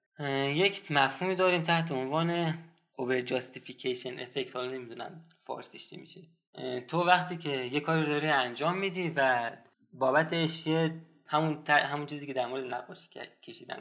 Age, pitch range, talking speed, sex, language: 20-39, 130-165 Hz, 140 wpm, male, Persian